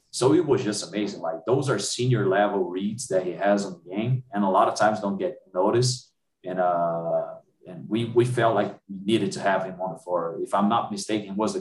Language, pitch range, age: English, 105-130 Hz, 30-49